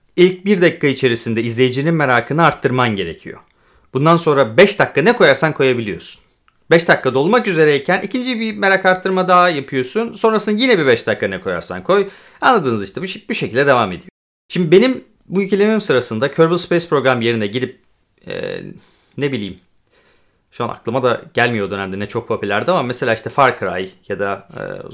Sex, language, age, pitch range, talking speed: male, Turkish, 30-49, 115-175 Hz, 170 wpm